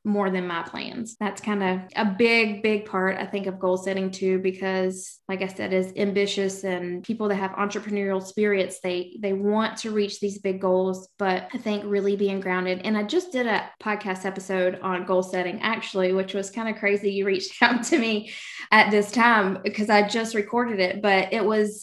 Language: English